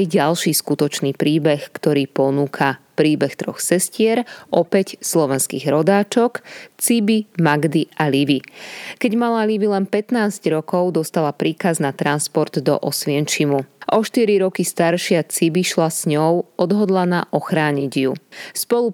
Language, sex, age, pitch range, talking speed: Slovak, female, 20-39, 150-190 Hz, 125 wpm